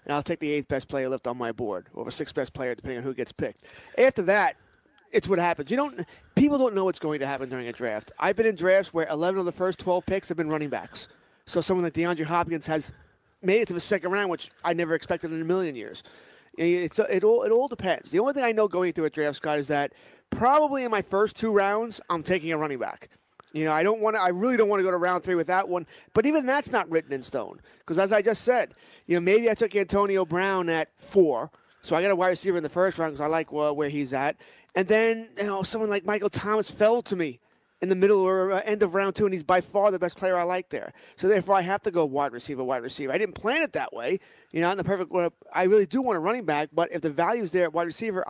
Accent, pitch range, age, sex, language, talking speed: American, 160-205 Hz, 30-49, male, English, 280 wpm